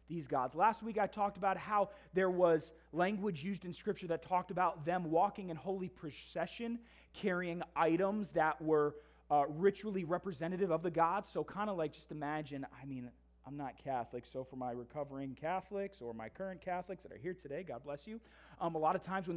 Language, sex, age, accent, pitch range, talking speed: English, male, 20-39, American, 155-205 Hz, 200 wpm